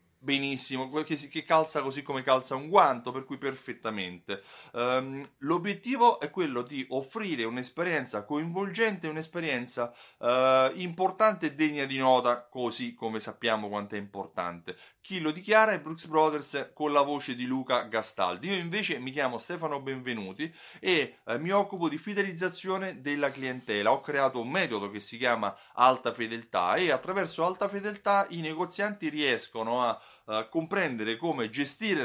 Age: 30-49